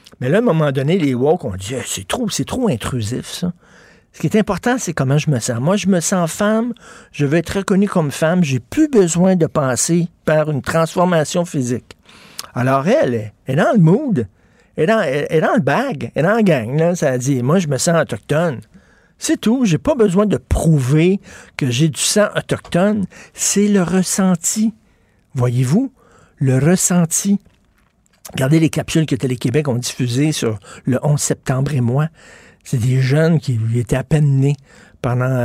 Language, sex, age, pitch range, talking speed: French, male, 60-79, 130-175 Hz, 195 wpm